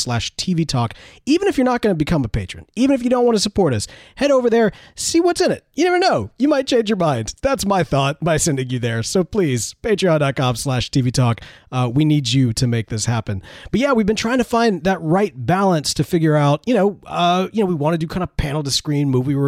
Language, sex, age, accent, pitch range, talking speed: English, male, 30-49, American, 125-195 Hz, 255 wpm